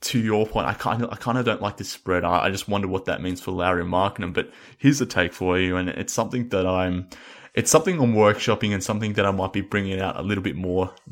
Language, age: English, 20-39